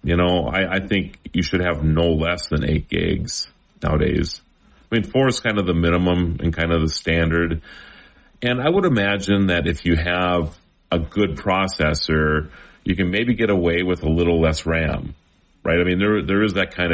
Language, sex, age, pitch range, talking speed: English, male, 40-59, 80-100 Hz, 200 wpm